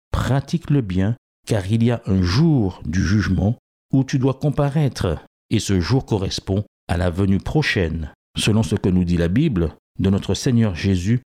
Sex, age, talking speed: male, 60-79, 175 wpm